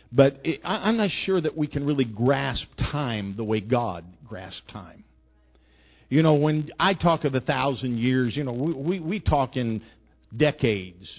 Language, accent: English, American